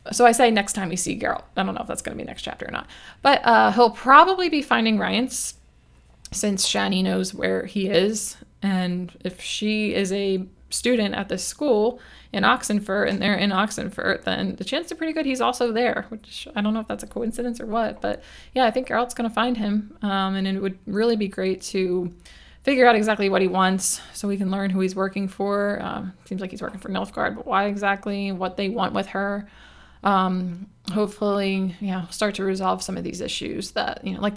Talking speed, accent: 225 wpm, American